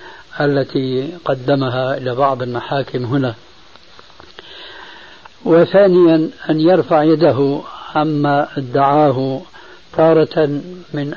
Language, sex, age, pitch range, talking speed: Arabic, male, 60-79, 135-165 Hz, 75 wpm